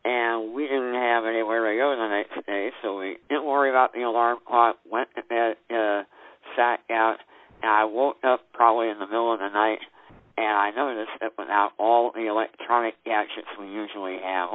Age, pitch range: 50-69, 105-120 Hz